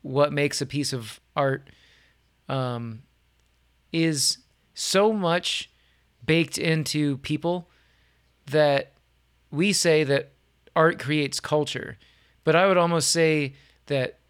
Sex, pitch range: male, 125-155 Hz